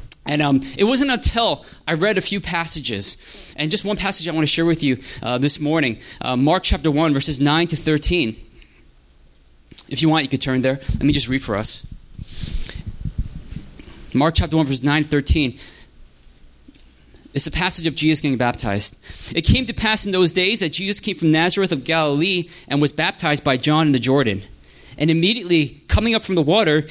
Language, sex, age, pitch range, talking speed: English, male, 20-39, 115-165 Hz, 195 wpm